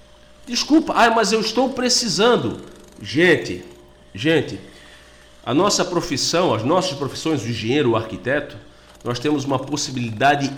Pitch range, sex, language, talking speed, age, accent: 120-175 Hz, male, Portuguese, 120 wpm, 50-69, Brazilian